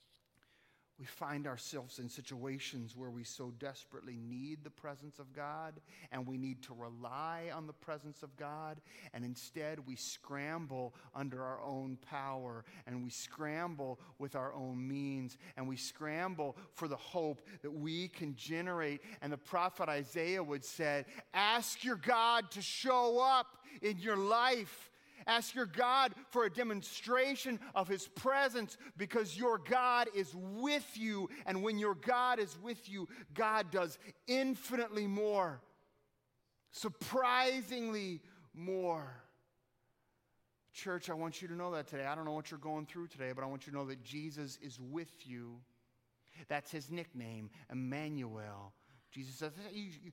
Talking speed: 150 wpm